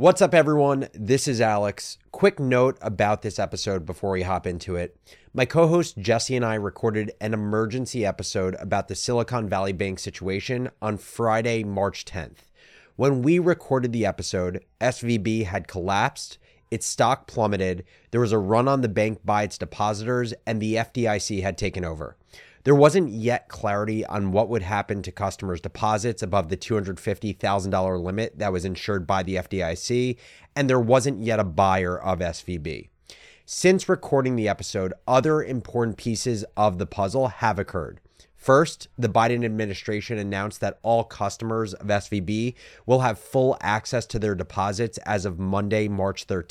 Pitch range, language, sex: 100-125 Hz, English, male